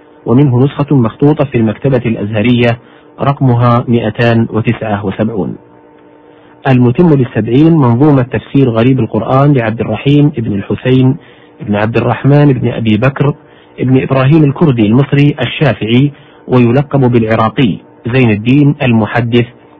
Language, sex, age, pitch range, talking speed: Arabic, male, 50-69, 105-130 Hz, 105 wpm